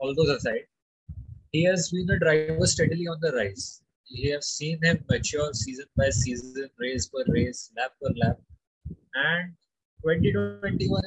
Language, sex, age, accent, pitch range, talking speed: English, male, 20-39, Indian, 120-160 Hz, 150 wpm